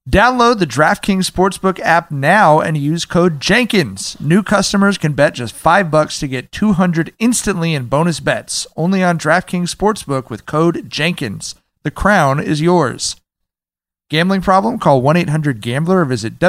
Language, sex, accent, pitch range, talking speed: English, male, American, 130-170 Hz, 150 wpm